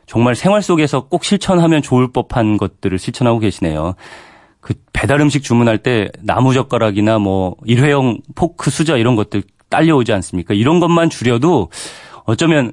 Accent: native